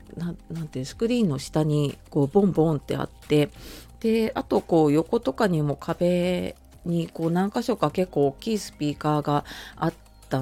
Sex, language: female, Japanese